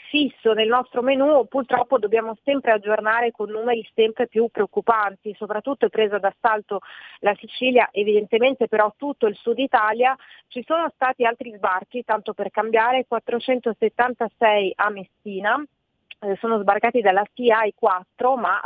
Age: 30-49